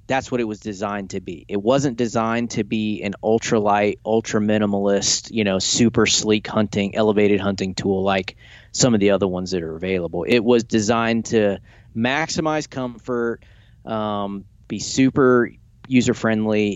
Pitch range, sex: 100-115 Hz, male